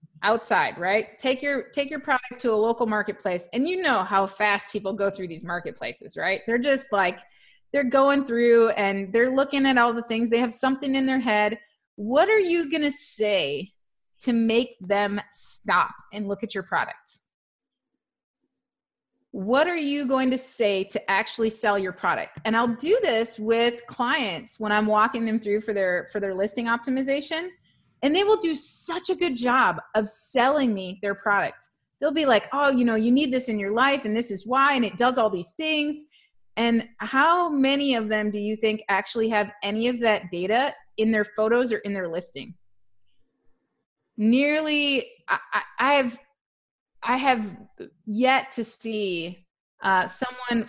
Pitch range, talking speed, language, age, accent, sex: 205-265 Hz, 180 wpm, English, 30-49, American, female